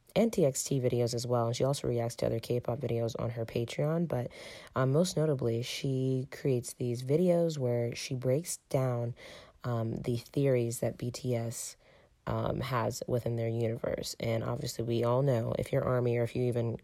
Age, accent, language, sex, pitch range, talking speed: 20-39, American, English, female, 120-150 Hz, 175 wpm